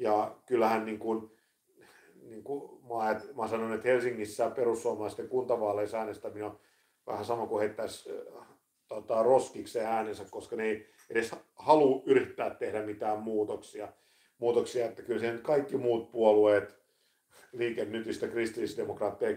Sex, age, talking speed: male, 50-69, 120 wpm